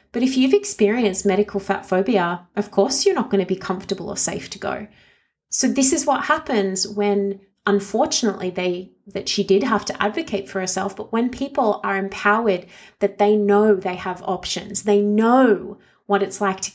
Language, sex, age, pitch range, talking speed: English, female, 30-49, 195-235 Hz, 185 wpm